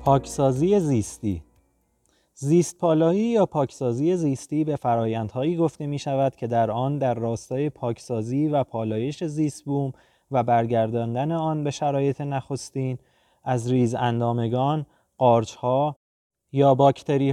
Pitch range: 130-160 Hz